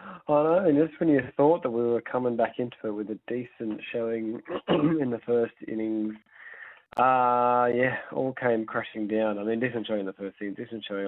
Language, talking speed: English, 210 wpm